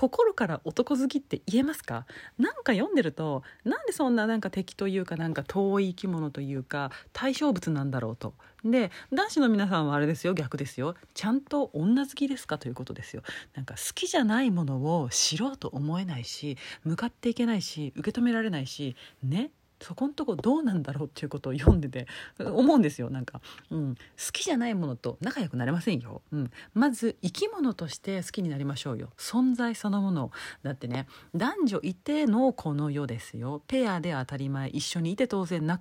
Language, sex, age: Japanese, female, 40-59